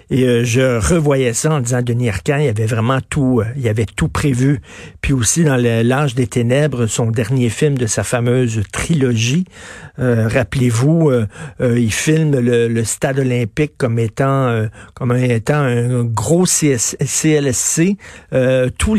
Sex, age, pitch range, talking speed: male, 50-69, 120-155 Hz, 155 wpm